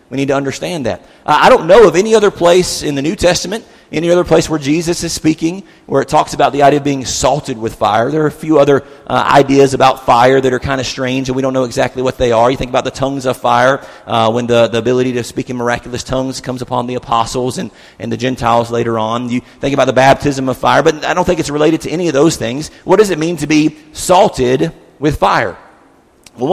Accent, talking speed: American, 250 wpm